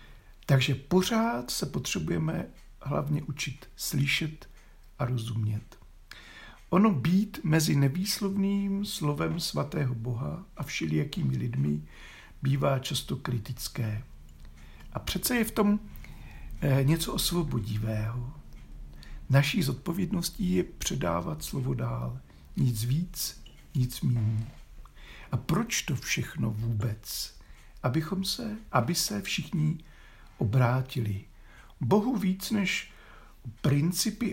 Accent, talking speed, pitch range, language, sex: native, 95 wpm, 115-175 Hz, Czech, male